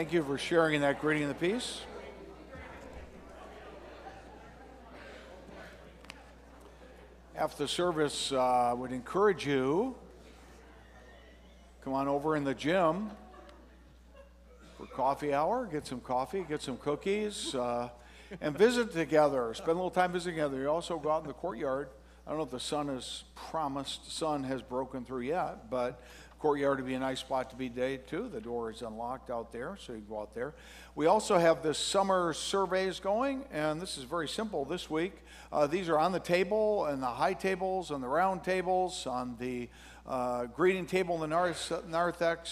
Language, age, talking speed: English, 60-79, 170 wpm